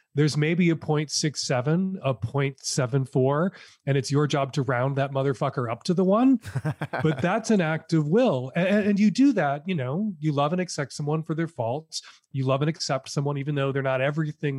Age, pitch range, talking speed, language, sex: 30-49, 135-175 Hz, 200 wpm, English, male